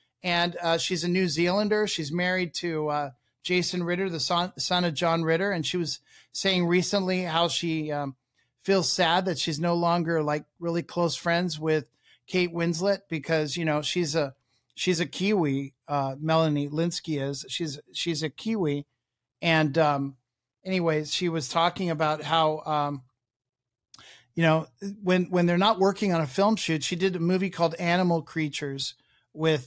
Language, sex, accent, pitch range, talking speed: English, male, American, 150-180 Hz, 170 wpm